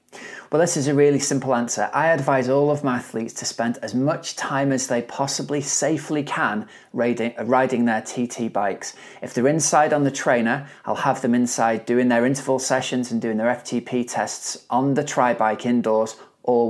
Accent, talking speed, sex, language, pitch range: British, 185 wpm, male, English, 115-135 Hz